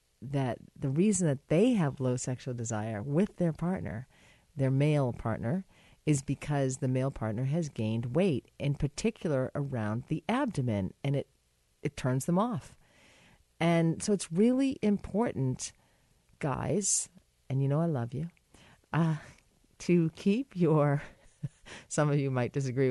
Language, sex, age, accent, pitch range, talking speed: English, female, 40-59, American, 130-170 Hz, 140 wpm